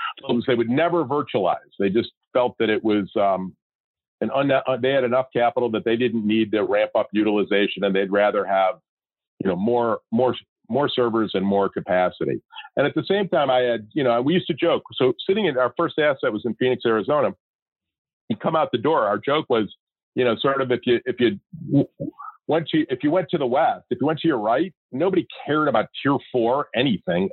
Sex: male